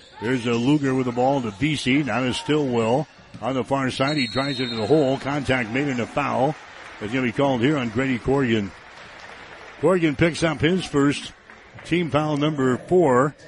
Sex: male